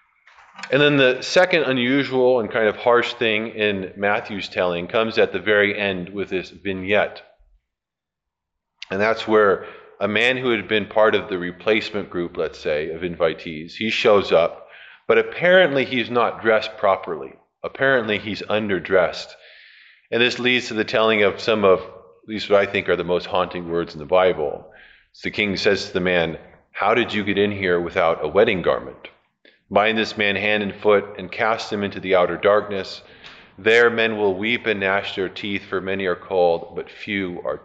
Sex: male